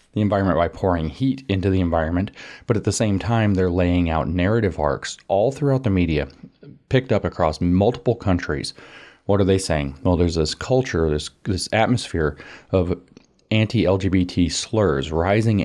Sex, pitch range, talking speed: male, 85-100 Hz, 160 wpm